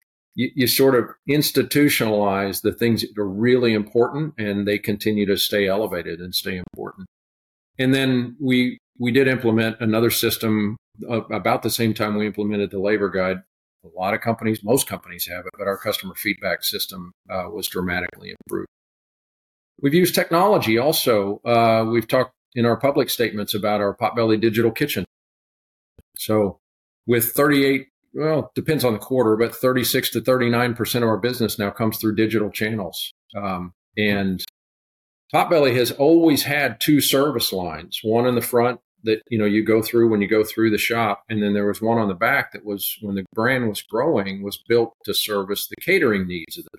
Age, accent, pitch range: 50-69, American, 100-120 Hz